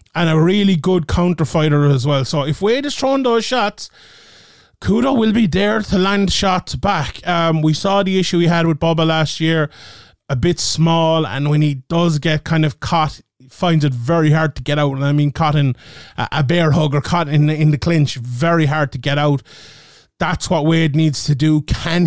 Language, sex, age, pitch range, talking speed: English, male, 30-49, 145-175 Hz, 220 wpm